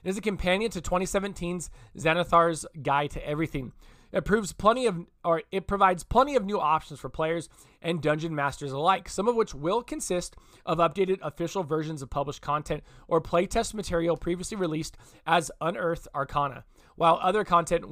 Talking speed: 165 wpm